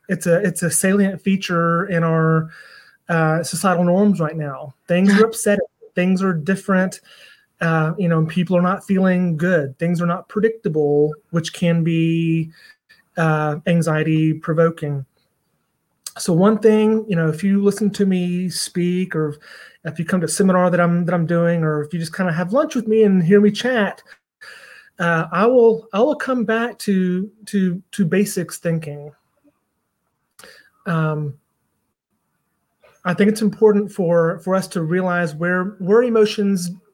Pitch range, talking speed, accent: 165-200 Hz, 160 wpm, American